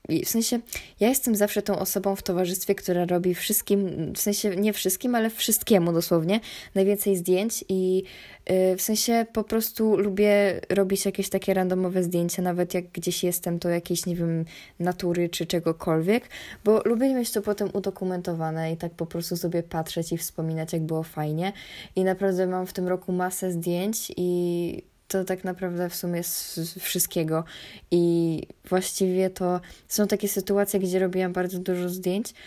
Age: 10-29